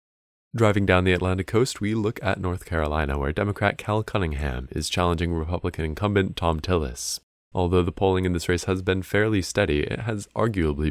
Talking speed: 180 wpm